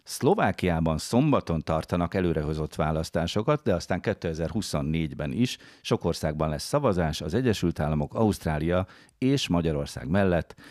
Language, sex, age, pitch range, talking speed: Hungarian, male, 50-69, 75-100 Hz, 110 wpm